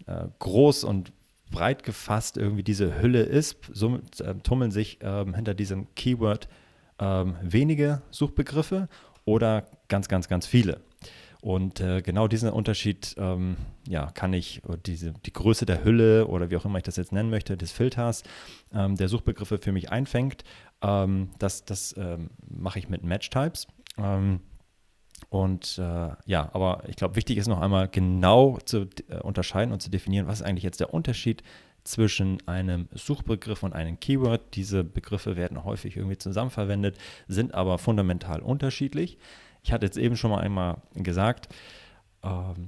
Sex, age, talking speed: male, 30-49, 160 wpm